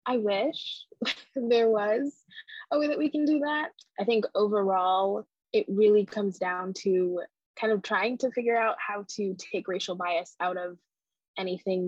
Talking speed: 165 wpm